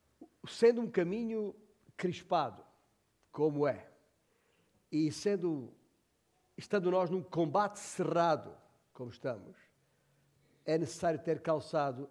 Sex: male